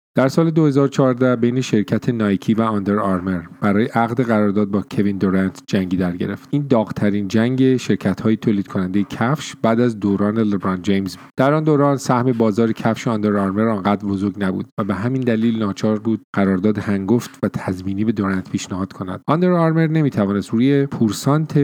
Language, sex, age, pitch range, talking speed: English, male, 40-59, 100-125 Hz, 170 wpm